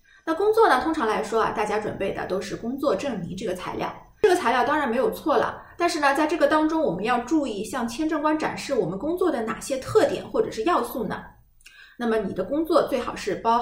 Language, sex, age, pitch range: Chinese, female, 20-39, 205-315 Hz